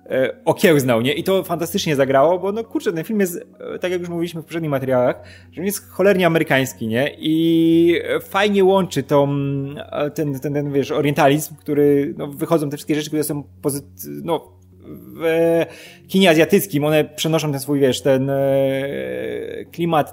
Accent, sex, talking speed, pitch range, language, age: native, male, 165 wpm, 140-175 Hz, Polish, 20-39